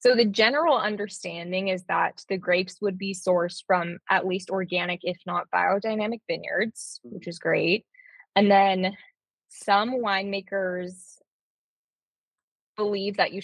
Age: 20-39